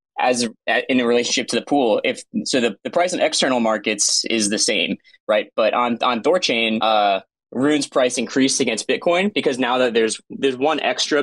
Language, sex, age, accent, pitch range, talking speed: English, male, 20-39, American, 110-165 Hz, 190 wpm